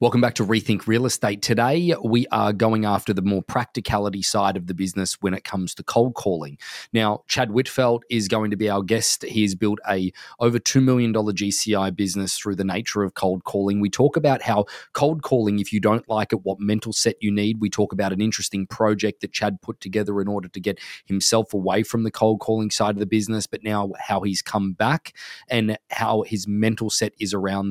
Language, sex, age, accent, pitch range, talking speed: English, male, 20-39, Australian, 100-120 Hz, 215 wpm